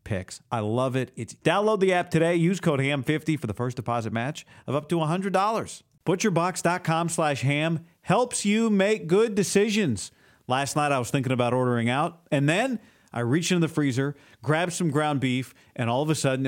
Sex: male